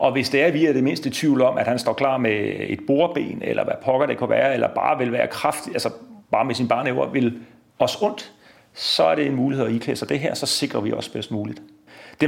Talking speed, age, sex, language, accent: 265 wpm, 40-59, male, Danish, native